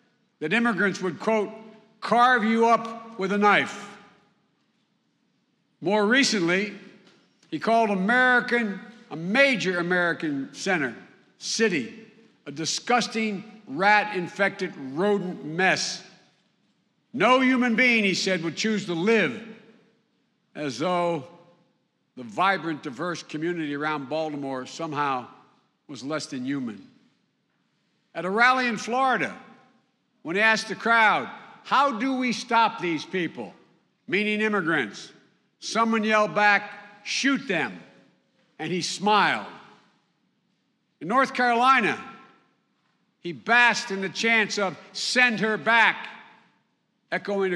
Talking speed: 110 wpm